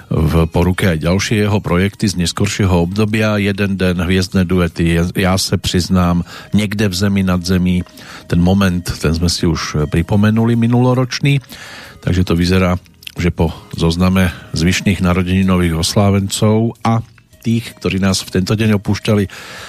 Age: 50-69